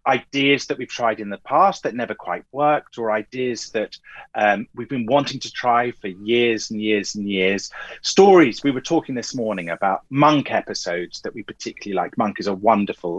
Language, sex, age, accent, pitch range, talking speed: English, male, 30-49, British, 100-135 Hz, 195 wpm